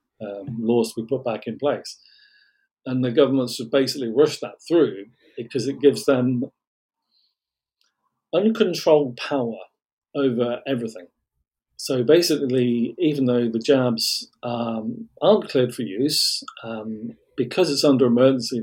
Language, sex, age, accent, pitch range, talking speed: English, male, 40-59, British, 115-150 Hz, 125 wpm